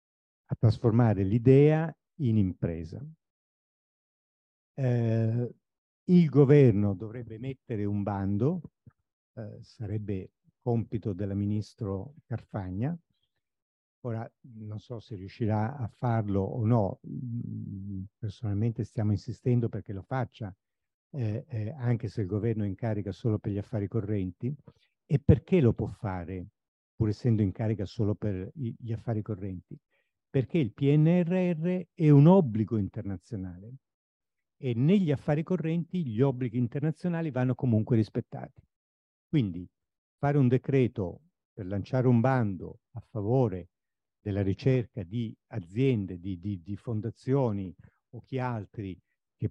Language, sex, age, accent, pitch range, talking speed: Italian, male, 50-69, native, 100-130 Hz, 120 wpm